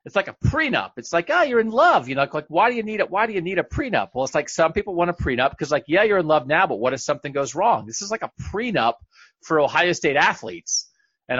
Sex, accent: male, American